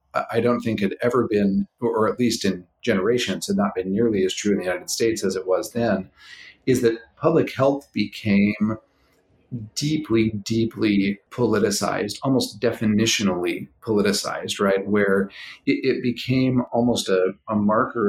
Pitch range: 100-120 Hz